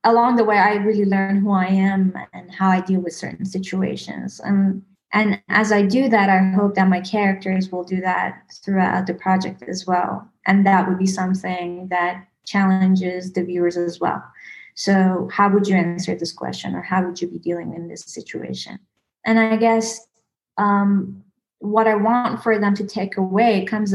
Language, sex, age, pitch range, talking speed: English, female, 20-39, 185-205 Hz, 190 wpm